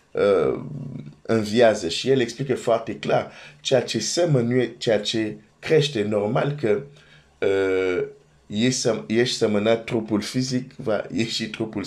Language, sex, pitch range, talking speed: Romanian, male, 75-120 Hz, 120 wpm